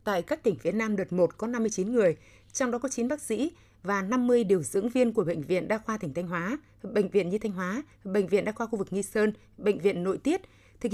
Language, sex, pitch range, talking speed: Vietnamese, female, 190-240 Hz, 260 wpm